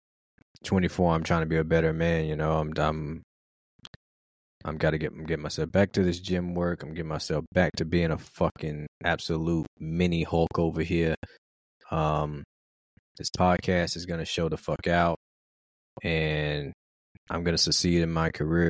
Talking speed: 165 wpm